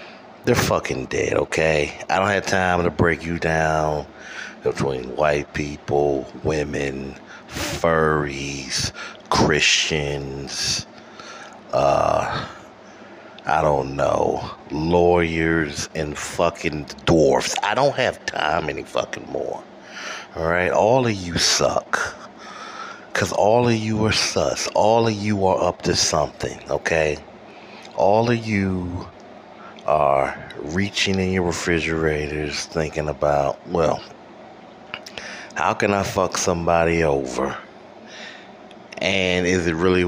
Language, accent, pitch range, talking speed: English, American, 75-90 Hz, 110 wpm